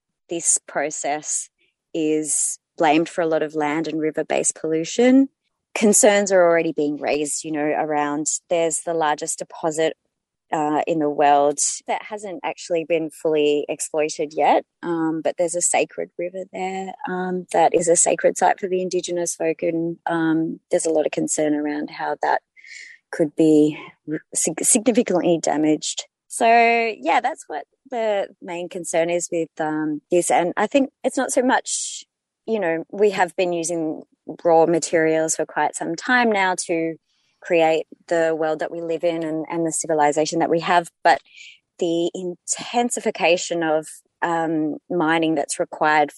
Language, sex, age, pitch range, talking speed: English, female, 20-39, 155-180 Hz, 155 wpm